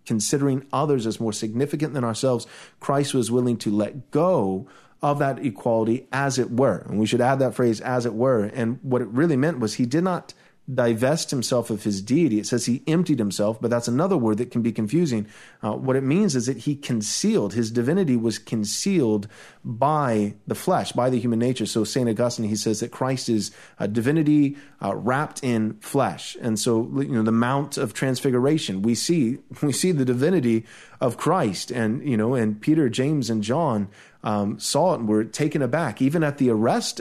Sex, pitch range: male, 115-150 Hz